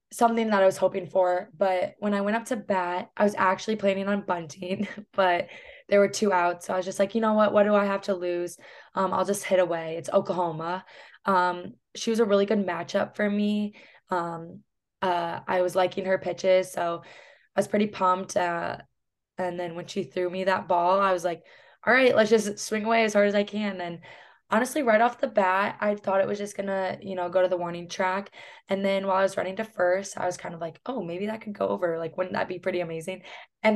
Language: English